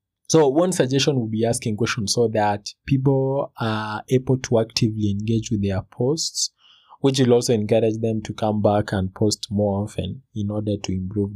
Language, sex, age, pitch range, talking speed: English, male, 20-39, 105-130 Hz, 180 wpm